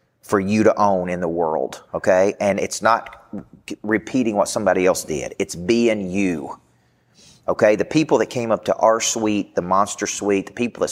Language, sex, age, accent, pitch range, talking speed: English, male, 40-59, American, 95-115 Hz, 185 wpm